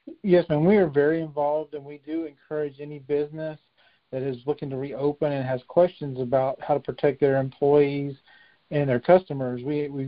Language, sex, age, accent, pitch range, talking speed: English, male, 40-59, American, 130-150 Hz, 185 wpm